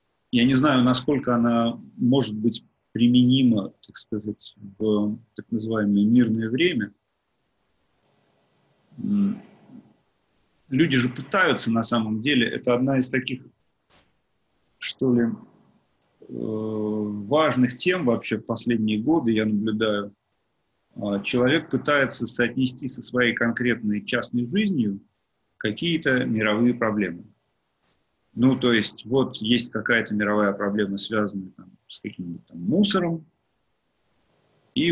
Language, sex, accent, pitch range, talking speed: Russian, male, native, 105-125 Hz, 105 wpm